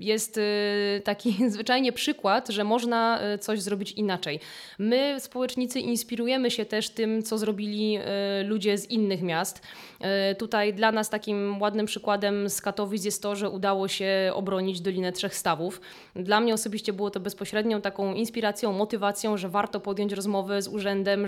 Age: 20-39